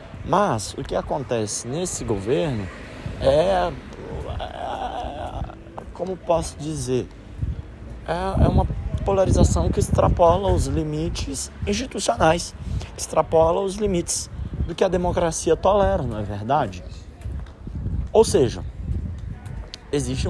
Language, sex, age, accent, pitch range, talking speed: Portuguese, male, 20-39, Brazilian, 95-150 Hz, 100 wpm